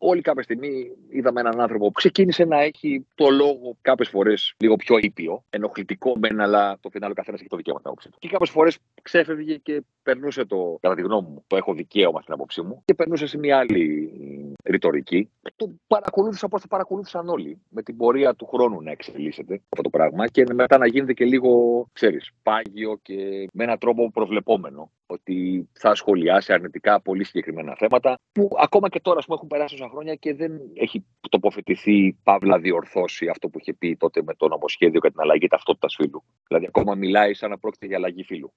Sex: male